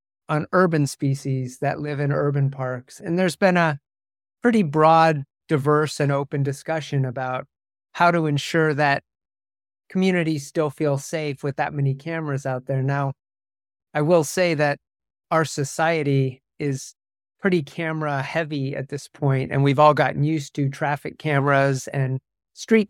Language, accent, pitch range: English, American, 135-155 Hz